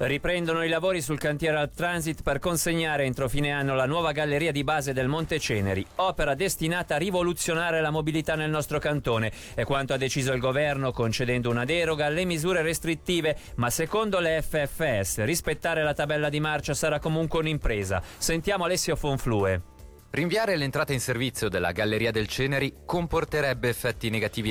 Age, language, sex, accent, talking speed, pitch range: 30-49, Italian, male, native, 165 wpm, 100-155 Hz